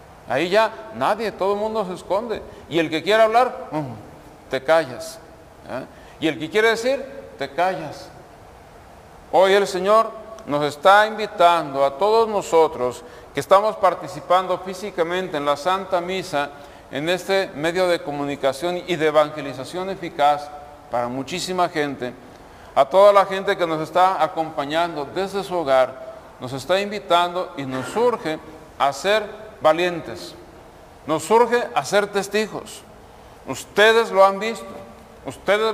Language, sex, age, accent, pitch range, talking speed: Spanish, male, 50-69, Mexican, 155-210 Hz, 140 wpm